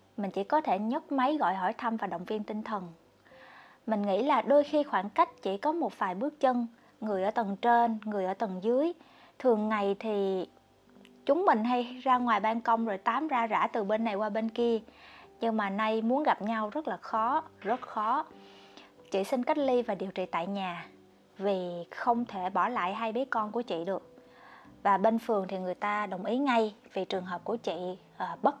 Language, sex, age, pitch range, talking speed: Vietnamese, female, 20-39, 195-250 Hz, 210 wpm